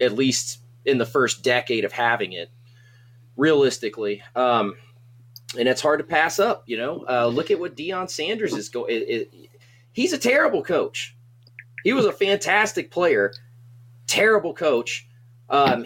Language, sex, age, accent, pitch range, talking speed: English, male, 30-49, American, 120-190 Hz, 150 wpm